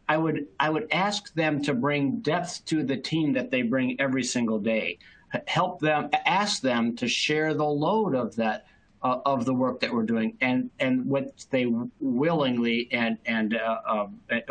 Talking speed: 180 wpm